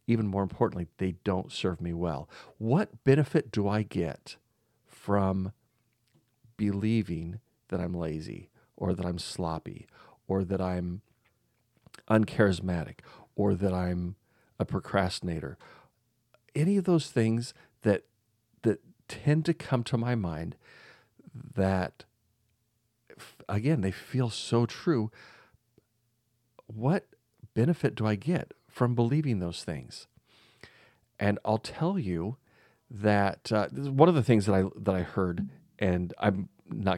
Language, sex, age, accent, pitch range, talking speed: English, male, 40-59, American, 90-120 Hz, 125 wpm